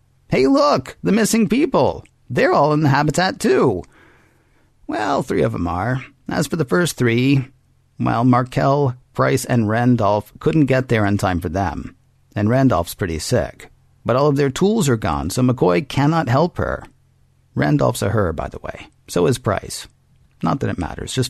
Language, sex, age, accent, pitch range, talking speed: English, male, 50-69, American, 105-135 Hz, 175 wpm